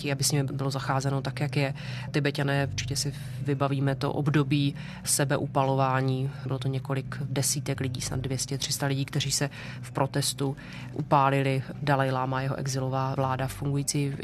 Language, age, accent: Czech, 30-49, native